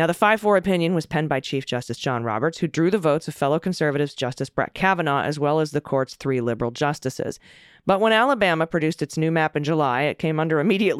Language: English